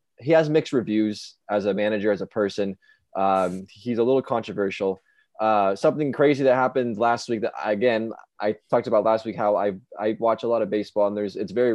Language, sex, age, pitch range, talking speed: English, male, 20-39, 100-120 Hz, 210 wpm